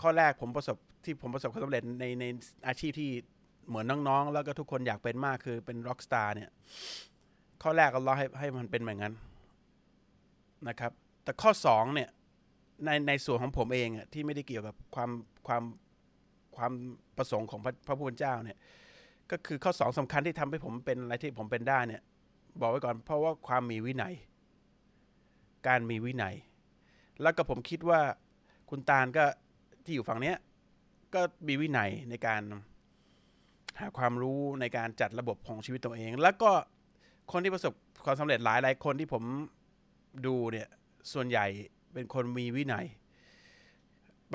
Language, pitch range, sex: Thai, 120-150 Hz, male